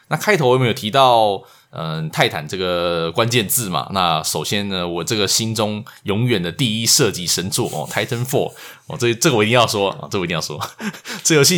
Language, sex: Chinese, male